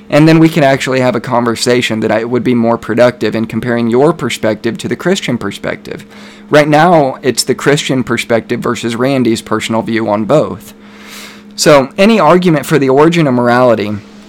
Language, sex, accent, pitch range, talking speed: English, male, American, 115-155 Hz, 170 wpm